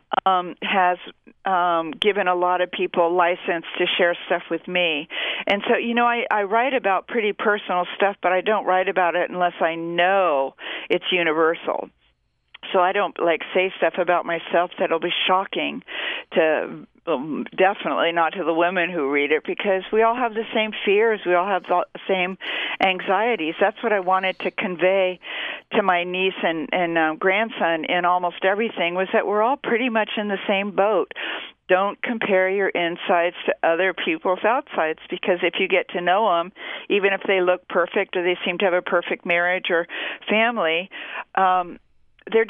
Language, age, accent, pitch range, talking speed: English, 50-69, American, 180-210 Hz, 180 wpm